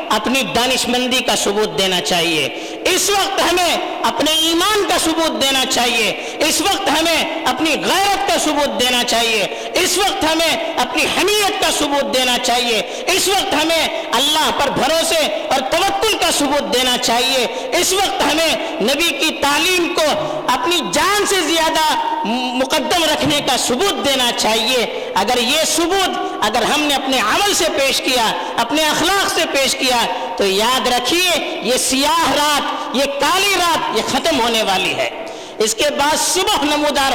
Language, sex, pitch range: Urdu, female, 255-340 Hz